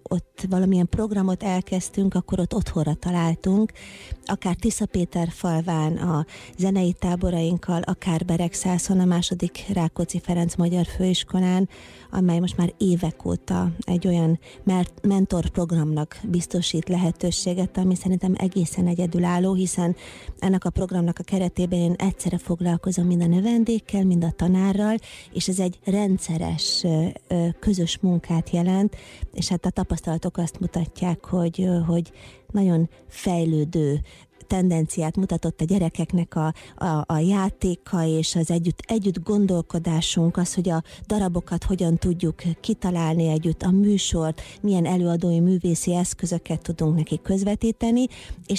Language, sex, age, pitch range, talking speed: Hungarian, female, 30-49, 170-190 Hz, 120 wpm